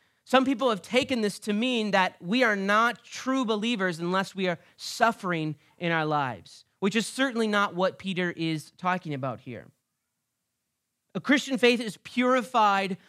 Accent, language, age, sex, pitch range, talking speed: American, English, 30-49, male, 180-235 Hz, 160 wpm